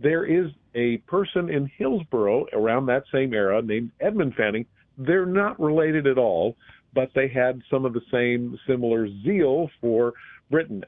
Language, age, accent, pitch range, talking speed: English, 50-69, American, 120-170 Hz, 160 wpm